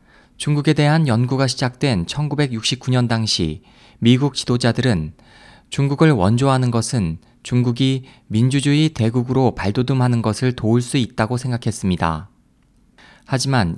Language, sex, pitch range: Korean, male, 110-135 Hz